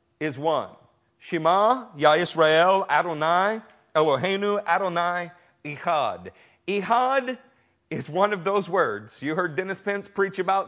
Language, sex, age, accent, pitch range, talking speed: English, male, 50-69, American, 175-260 Hz, 110 wpm